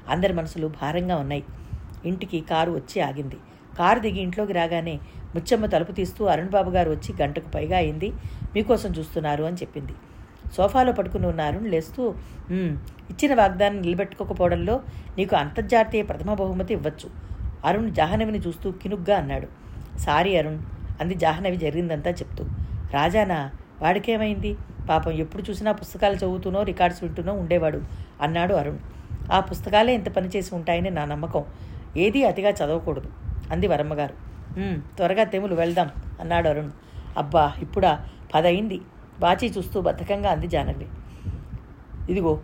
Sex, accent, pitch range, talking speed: female, native, 160-200 Hz, 125 wpm